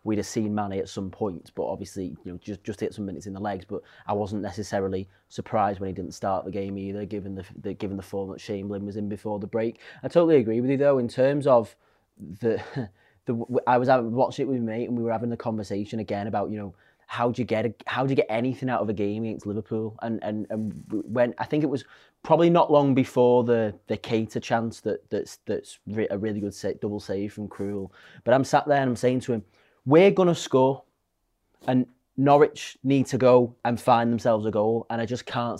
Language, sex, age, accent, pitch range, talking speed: English, male, 20-39, British, 105-130 Hz, 235 wpm